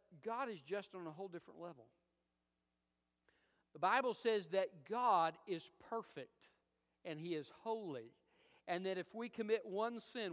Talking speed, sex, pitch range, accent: 150 wpm, male, 130-200 Hz, American